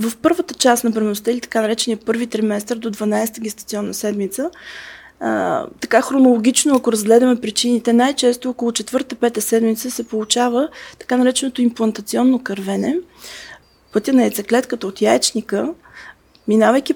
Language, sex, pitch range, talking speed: Bulgarian, female, 210-245 Hz, 130 wpm